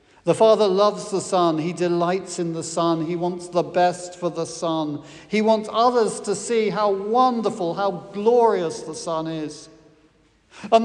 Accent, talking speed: British, 165 wpm